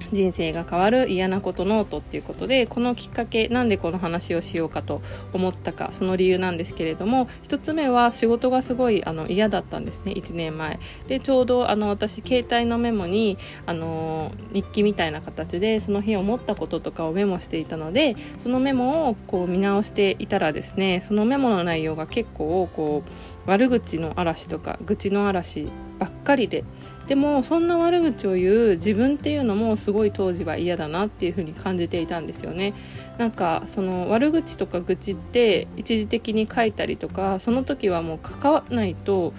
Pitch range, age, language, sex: 170-230 Hz, 20-39, Japanese, female